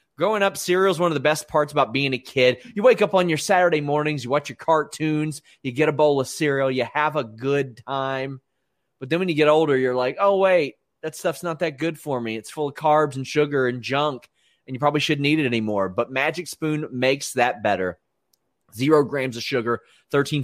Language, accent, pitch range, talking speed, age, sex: English, American, 120-150 Hz, 230 wpm, 30-49, male